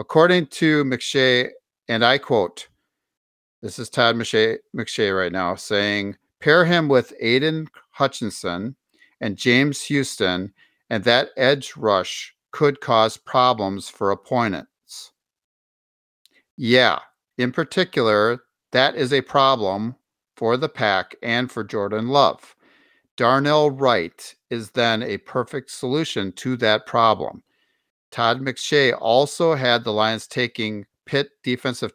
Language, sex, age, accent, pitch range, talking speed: English, male, 50-69, American, 105-135 Hz, 120 wpm